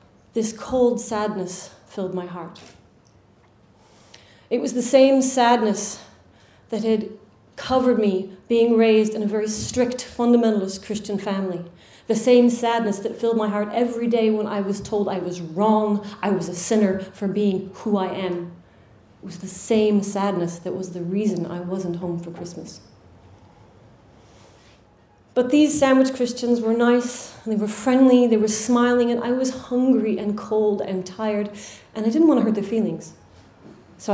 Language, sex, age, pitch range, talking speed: English, female, 30-49, 185-225 Hz, 165 wpm